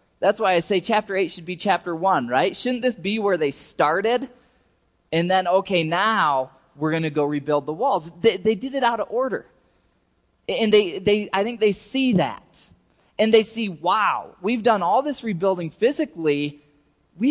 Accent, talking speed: American, 185 wpm